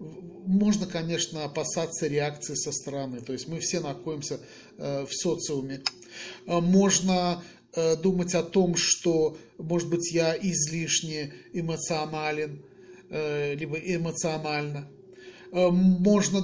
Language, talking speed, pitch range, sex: Russian, 95 wpm, 165-200 Hz, male